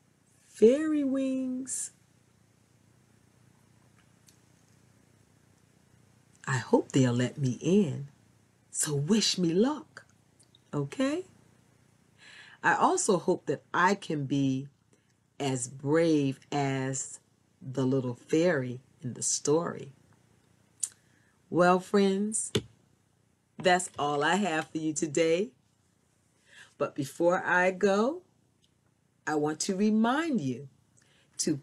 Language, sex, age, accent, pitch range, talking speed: English, female, 40-59, American, 130-220 Hz, 90 wpm